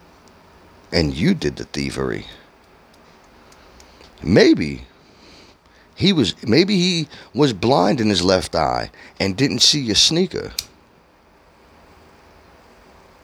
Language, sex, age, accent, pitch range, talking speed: English, male, 40-59, American, 90-115 Hz, 95 wpm